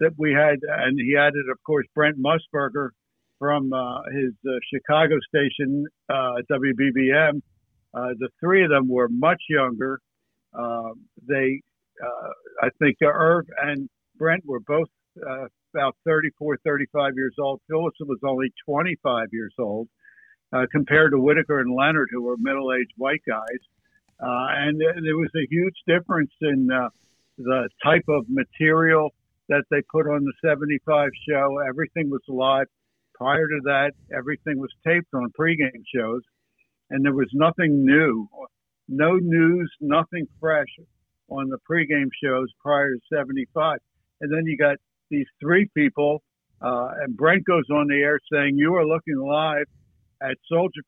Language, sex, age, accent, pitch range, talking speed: English, male, 60-79, American, 130-155 Hz, 150 wpm